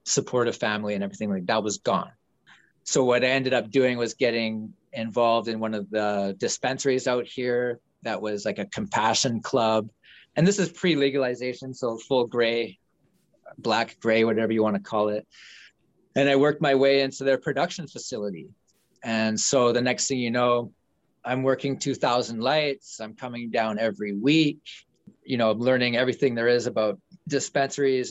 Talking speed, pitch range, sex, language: 165 wpm, 110-135 Hz, male, English